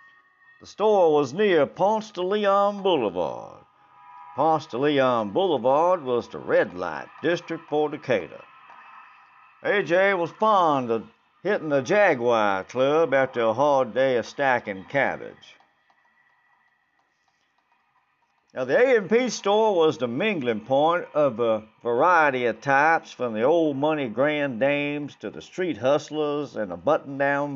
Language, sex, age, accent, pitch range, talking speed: English, male, 50-69, American, 130-185 Hz, 130 wpm